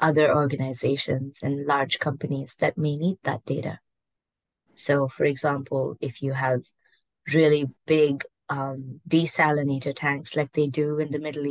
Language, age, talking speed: English, 20-39, 140 wpm